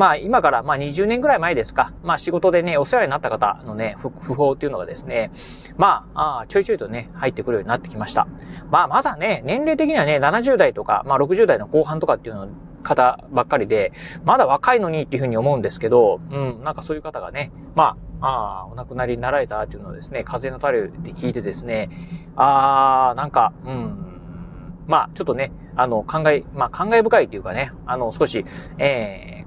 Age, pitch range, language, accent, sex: 30-49, 145-225 Hz, Japanese, native, male